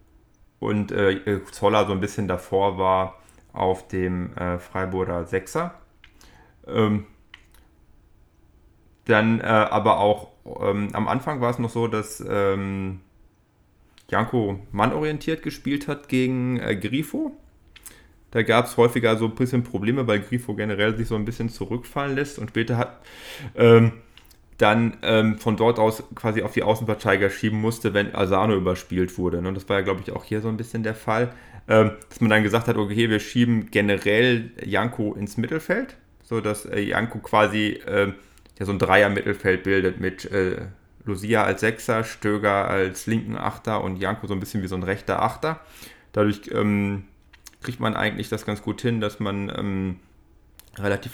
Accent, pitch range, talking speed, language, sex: German, 95-115 Hz, 160 wpm, German, male